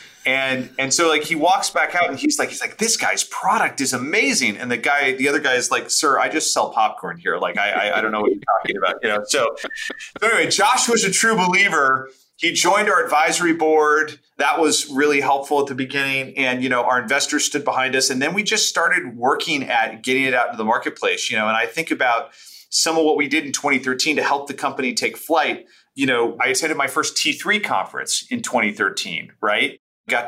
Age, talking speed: 30-49, 225 wpm